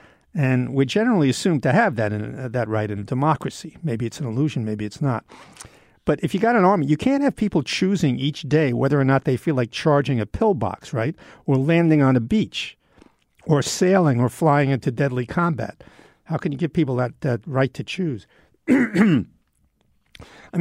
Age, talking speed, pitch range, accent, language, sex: 60-79, 195 wpm, 130-175 Hz, American, English, male